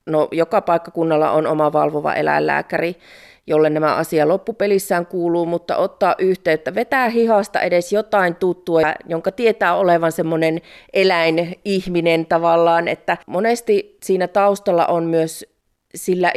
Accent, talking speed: native, 115 wpm